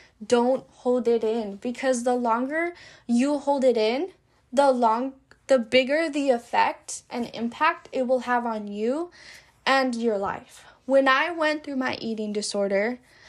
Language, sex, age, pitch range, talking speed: English, female, 10-29, 215-265 Hz, 155 wpm